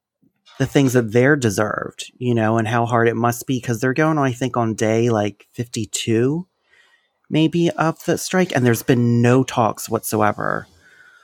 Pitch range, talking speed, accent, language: 115-135 Hz, 170 wpm, American, English